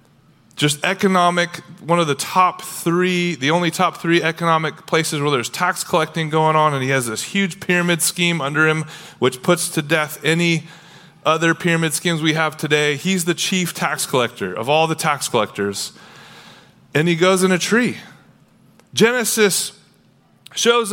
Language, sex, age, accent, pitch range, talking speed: English, male, 30-49, American, 155-185 Hz, 165 wpm